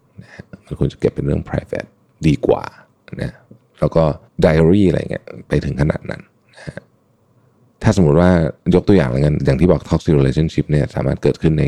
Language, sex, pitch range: Thai, male, 65-85 Hz